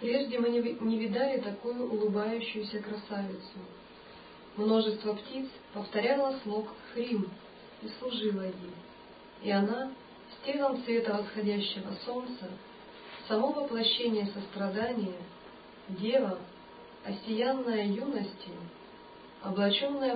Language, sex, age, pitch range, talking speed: Russian, male, 50-69, 200-240 Hz, 85 wpm